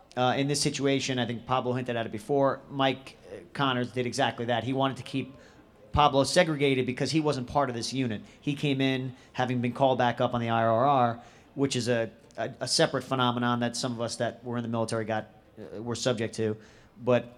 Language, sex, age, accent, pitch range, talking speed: English, male, 40-59, American, 120-135 Hz, 215 wpm